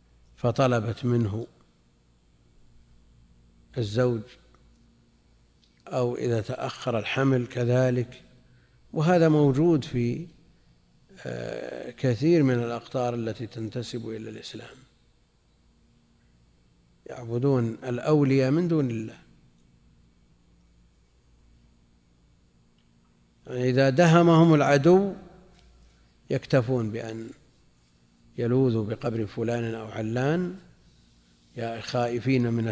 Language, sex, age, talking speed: Arabic, male, 50-69, 70 wpm